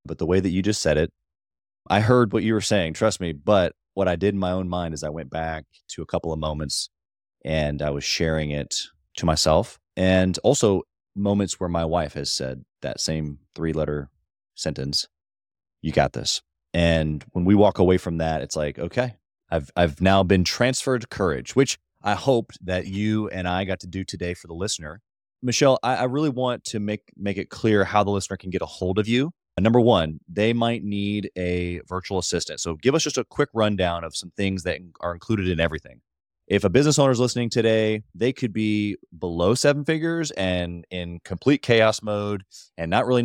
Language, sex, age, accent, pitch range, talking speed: English, male, 30-49, American, 80-110 Hz, 205 wpm